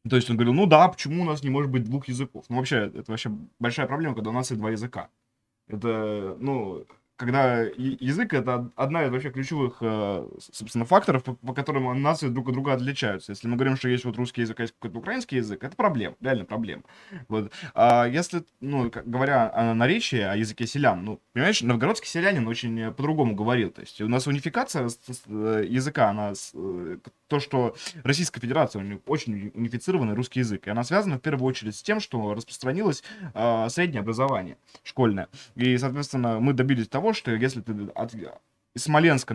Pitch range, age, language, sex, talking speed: 115-145 Hz, 20-39, Russian, male, 180 wpm